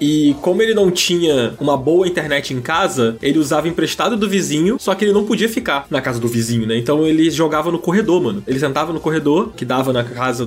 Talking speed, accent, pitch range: 230 wpm, Brazilian, 125-155 Hz